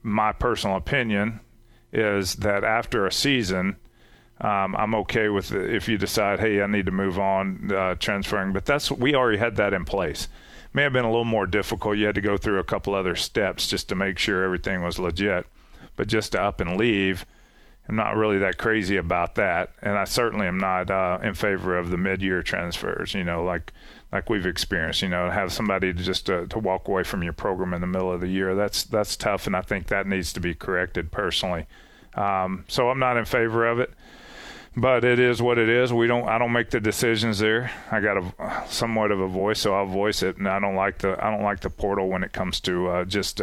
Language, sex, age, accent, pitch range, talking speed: English, male, 40-59, American, 90-110 Hz, 230 wpm